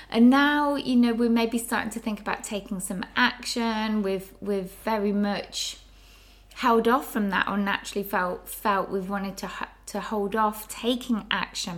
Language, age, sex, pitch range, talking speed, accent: English, 20-39, female, 185-225 Hz, 175 wpm, British